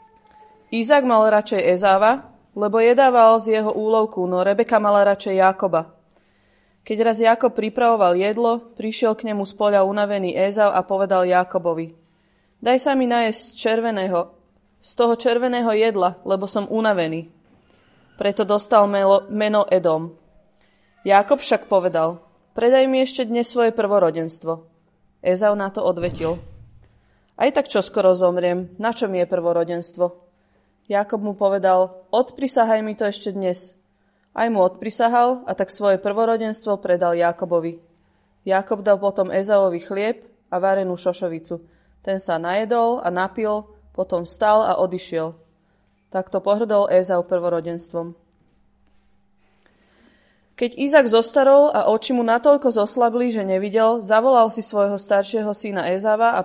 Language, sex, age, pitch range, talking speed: Slovak, female, 20-39, 180-225 Hz, 130 wpm